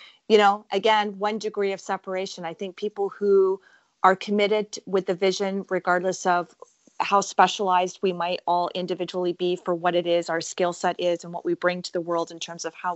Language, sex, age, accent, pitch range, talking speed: English, female, 30-49, American, 170-195 Hz, 205 wpm